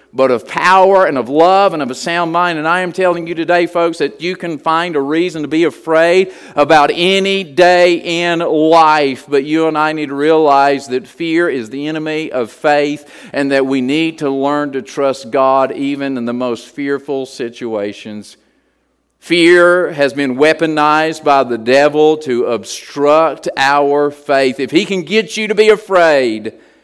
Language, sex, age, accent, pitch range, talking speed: English, male, 50-69, American, 140-170 Hz, 180 wpm